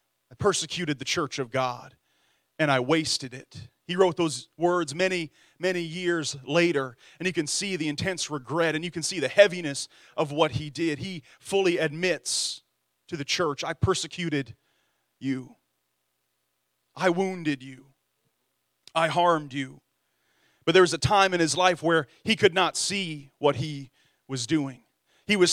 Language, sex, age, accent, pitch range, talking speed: English, male, 30-49, American, 145-185 Hz, 160 wpm